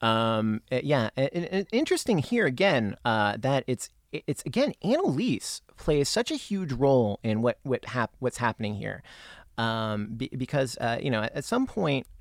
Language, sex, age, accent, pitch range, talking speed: English, male, 30-49, American, 110-150 Hz, 175 wpm